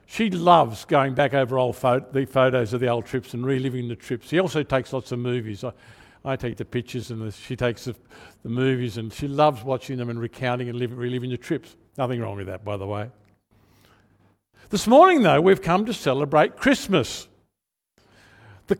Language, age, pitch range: English, 60-79, 120-190 Hz